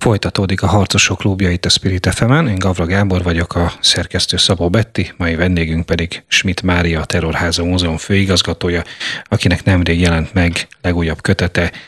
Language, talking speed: Hungarian, 150 wpm